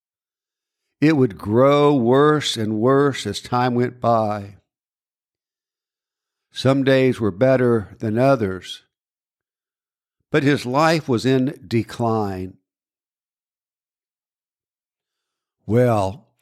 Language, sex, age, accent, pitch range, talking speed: English, male, 60-79, American, 115-150 Hz, 85 wpm